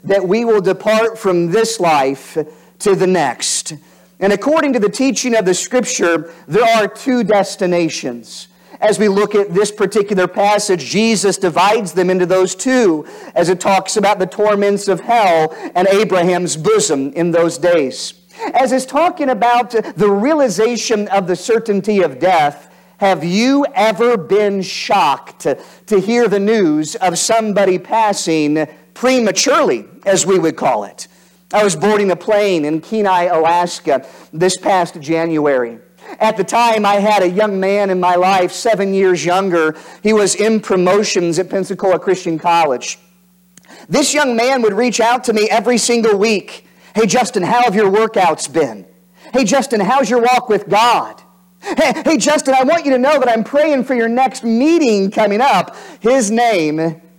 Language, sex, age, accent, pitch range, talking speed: English, male, 50-69, American, 180-225 Hz, 165 wpm